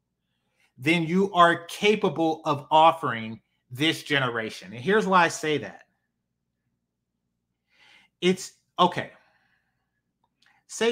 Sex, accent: male, American